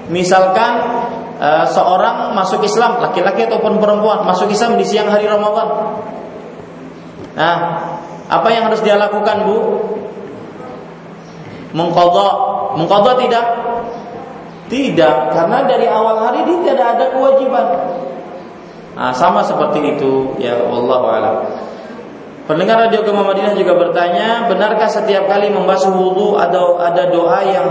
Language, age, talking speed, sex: Malay, 30-49, 115 wpm, male